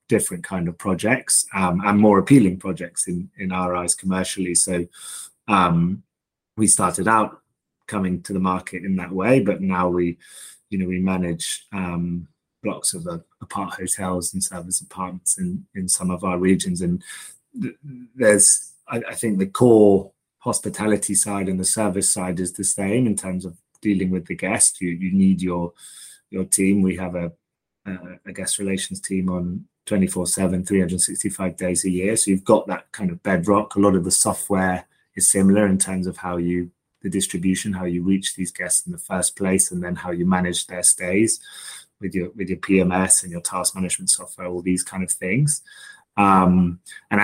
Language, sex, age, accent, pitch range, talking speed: English, male, 30-49, British, 90-100 Hz, 185 wpm